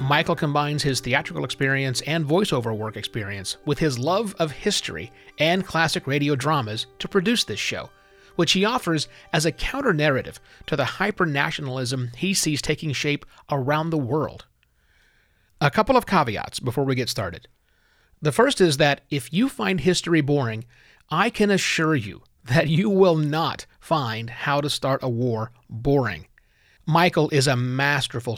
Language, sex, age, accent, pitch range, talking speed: English, male, 40-59, American, 120-175 Hz, 155 wpm